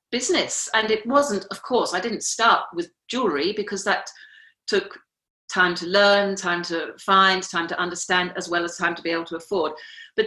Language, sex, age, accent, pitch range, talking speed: English, female, 40-59, British, 175-215 Hz, 195 wpm